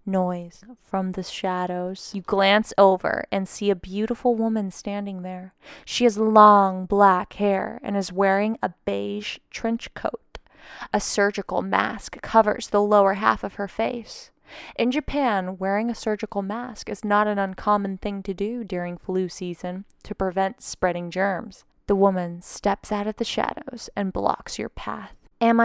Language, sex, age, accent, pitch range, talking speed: English, female, 20-39, American, 190-220 Hz, 160 wpm